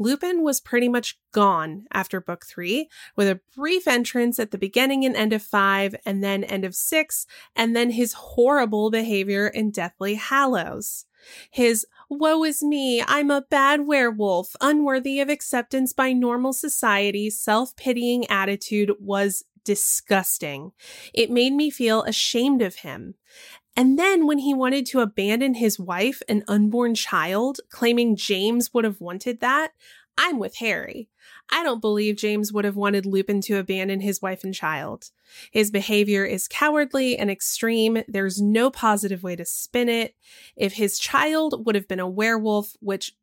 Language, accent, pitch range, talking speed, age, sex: English, American, 200-260 Hz, 160 wpm, 20-39, female